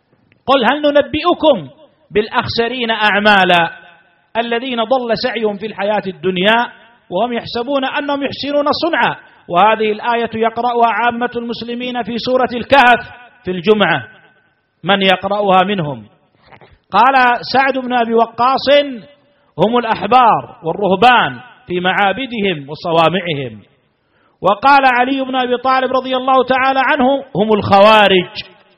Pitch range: 195-260 Hz